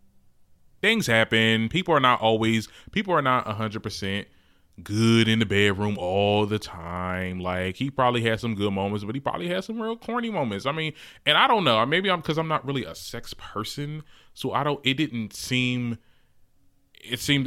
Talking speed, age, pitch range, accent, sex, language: 190 wpm, 20-39, 95-120 Hz, American, male, English